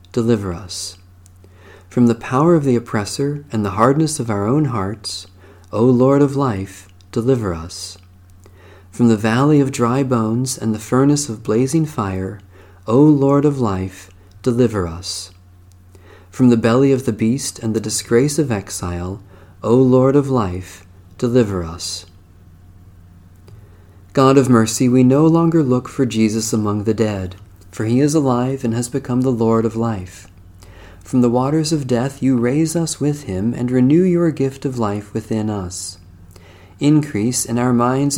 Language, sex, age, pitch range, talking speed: English, male, 40-59, 95-130 Hz, 160 wpm